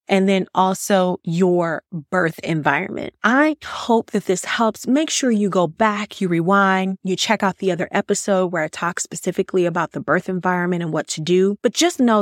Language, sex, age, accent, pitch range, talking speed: English, female, 30-49, American, 180-215 Hz, 190 wpm